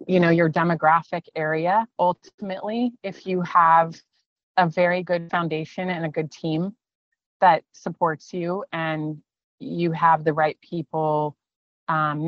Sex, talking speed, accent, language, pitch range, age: female, 130 wpm, American, English, 145-170 Hz, 30-49